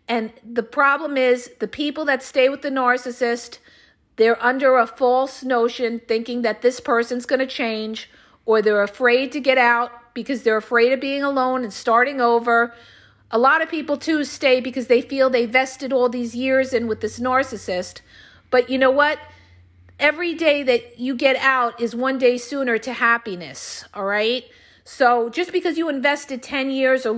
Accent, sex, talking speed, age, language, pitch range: American, female, 180 wpm, 50-69, English, 235-290 Hz